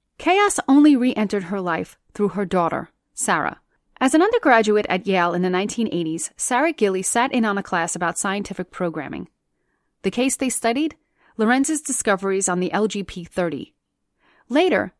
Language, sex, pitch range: English, female, 180-250 Hz